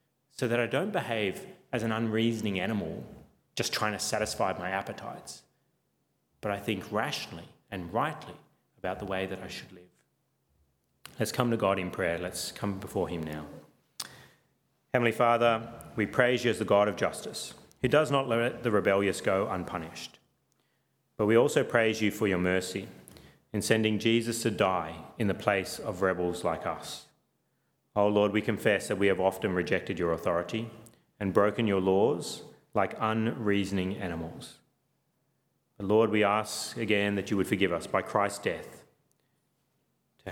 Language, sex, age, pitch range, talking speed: English, male, 30-49, 95-115 Hz, 160 wpm